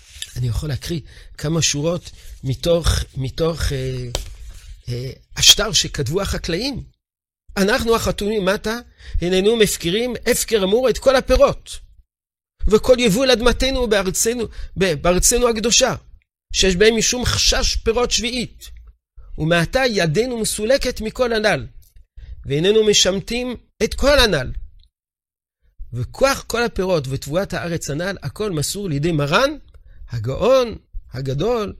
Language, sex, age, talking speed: Hebrew, male, 50-69, 105 wpm